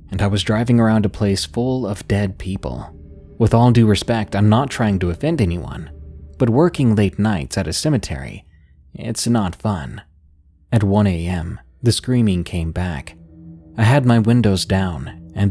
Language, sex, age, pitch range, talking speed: English, male, 20-39, 85-120 Hz, 170 wpm